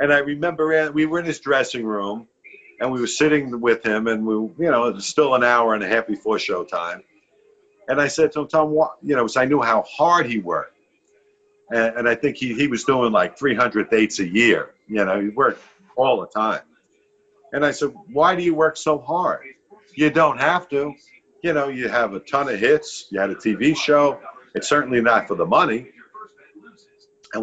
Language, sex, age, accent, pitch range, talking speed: English, male, 50-69, American, 115-175 Hz, 215 wpm